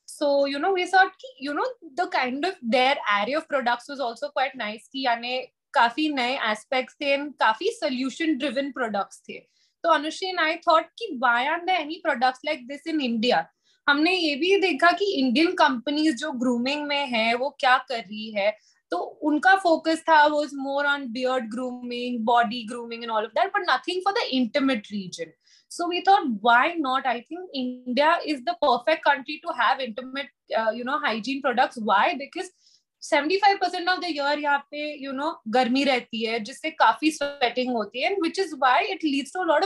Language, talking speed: English, 175 wpm